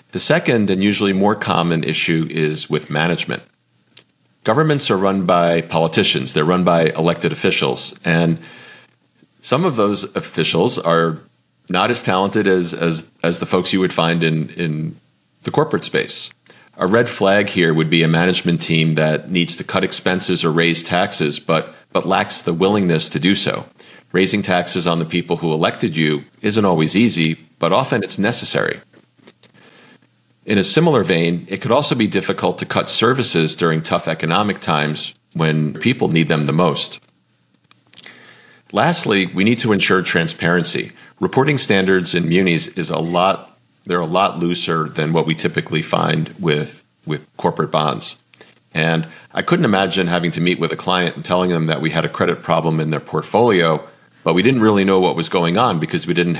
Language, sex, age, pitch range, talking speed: English, male, 40-59, 80-95 Hz, 175 wpm